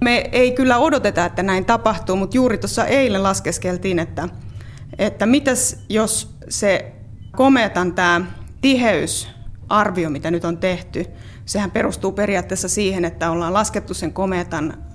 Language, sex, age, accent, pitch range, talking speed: Finnish, female, 30-49, native, 170-210 Hz, 135 wpm